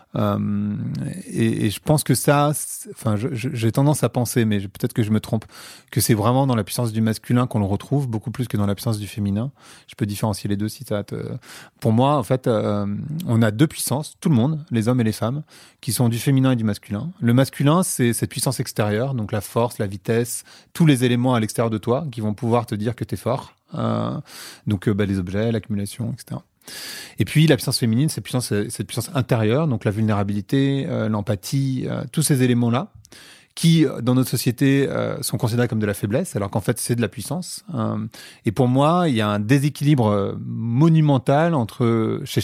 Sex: male